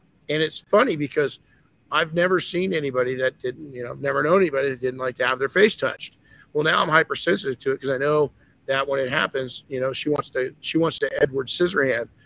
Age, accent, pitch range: 50-69, American, 135-185 Hz